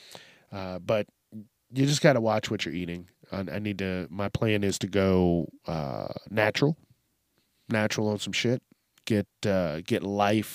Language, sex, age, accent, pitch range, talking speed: English, male, 30-49, American, 105-145 Hz, 165 wpm